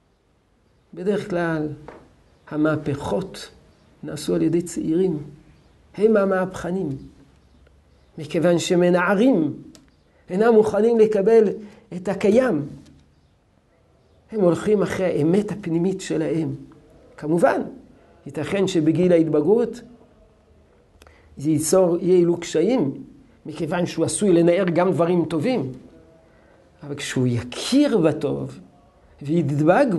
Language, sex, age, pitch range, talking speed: Hebrew, male, 50-69, 145-200 Hz, 85 wpm